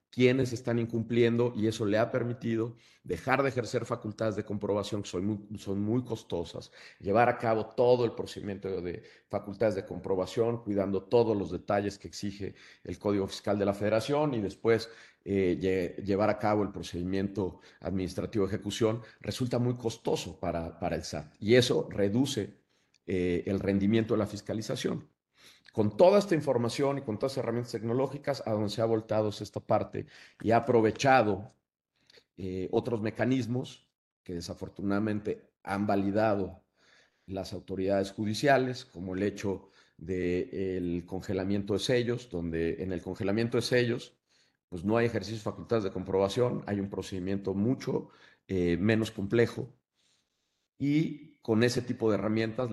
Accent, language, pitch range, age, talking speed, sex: Mexican, Spanish, 95-115 Hz, 40-59, 150 wpm, male